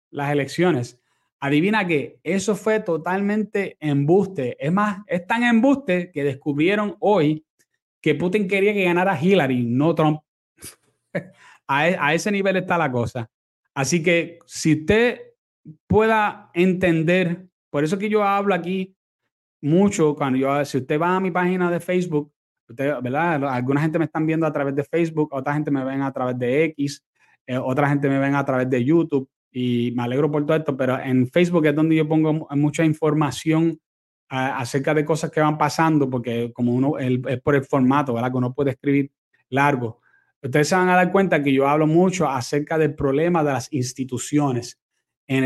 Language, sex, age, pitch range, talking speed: Spanish, male, 30-49, 140-180 Hz, 175 wpm